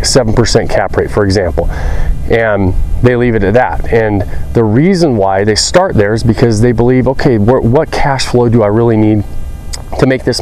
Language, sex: English, male